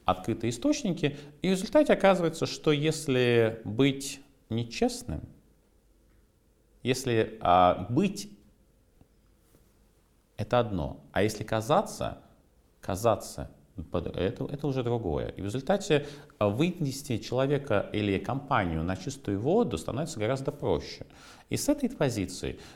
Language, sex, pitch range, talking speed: Russian, male, 95-140 Hz, 100 wpm